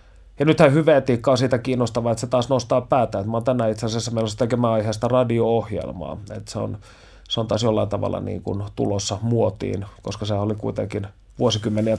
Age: 30-49